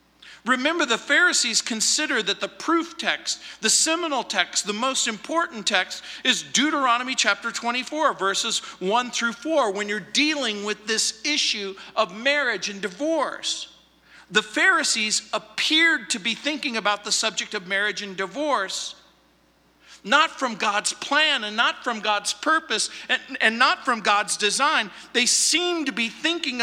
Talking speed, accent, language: 150 wpm, American, English